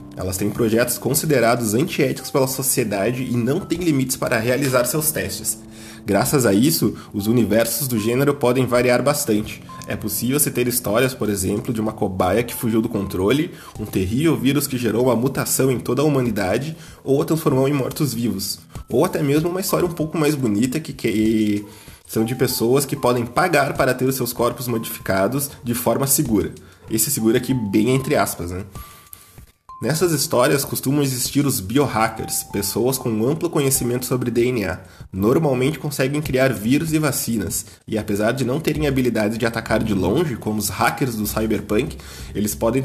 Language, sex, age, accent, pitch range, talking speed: Portuguese, male, 20-39, Brazilian, 110-140 Hz, 170 wpm